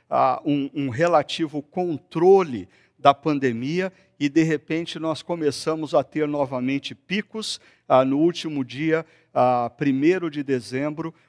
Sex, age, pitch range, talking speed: male, 50-69, 135-165 Hz, 110 wpm